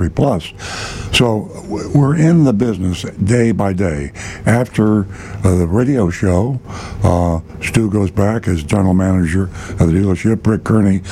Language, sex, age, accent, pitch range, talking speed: English, male, 60-79, American, 90-105 Hz, 140 wpm